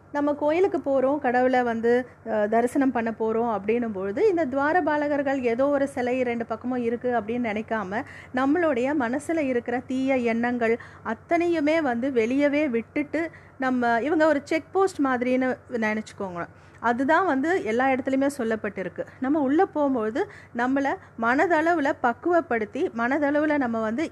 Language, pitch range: Tamil, 230-290 Hz